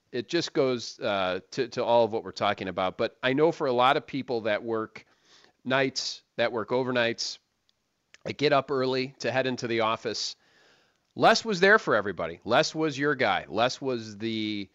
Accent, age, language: American, 40-59, English